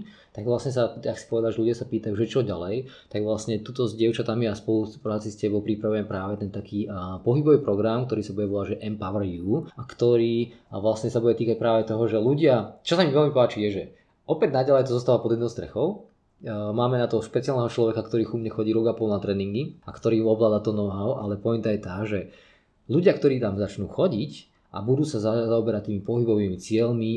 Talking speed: 210 wpm